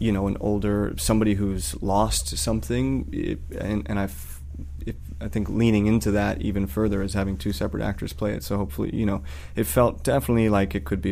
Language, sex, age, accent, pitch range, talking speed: English, male, 30-49, American, 75-105 Hz, 200 wpm